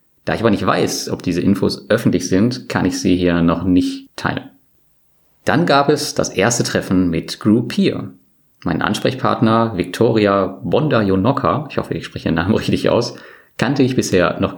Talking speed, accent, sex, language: 175 wpm, German, male, German